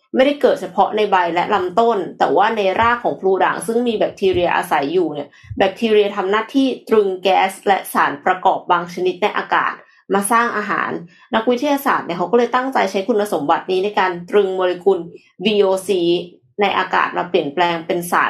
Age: 20-39